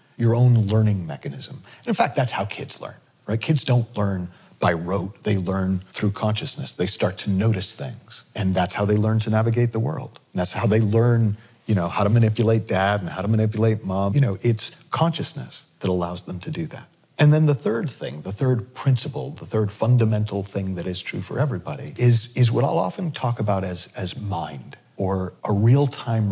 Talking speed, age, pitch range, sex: 205 wpm, 40-59, 100-125 Hz, male